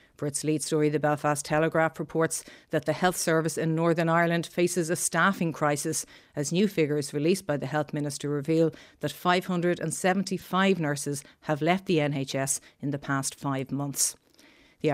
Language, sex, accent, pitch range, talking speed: English, female, Irish, 145-165 Hz, 165 wpm